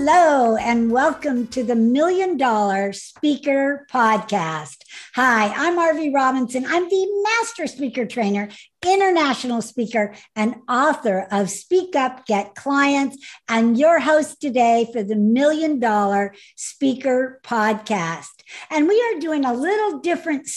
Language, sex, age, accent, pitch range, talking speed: English, female, 60-79, American, 210-305 Hz, 130 wpm